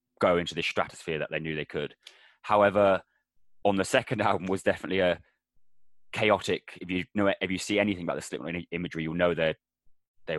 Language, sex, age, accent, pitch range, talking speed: English, male, 20-39, British, 85-100 Hz, 195 wpm